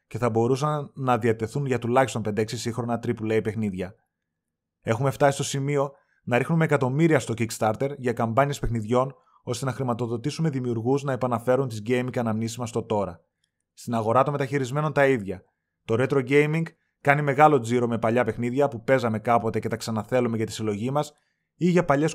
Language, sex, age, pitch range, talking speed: Greek, male, 20-39, 115-145 Hz, 170 wpm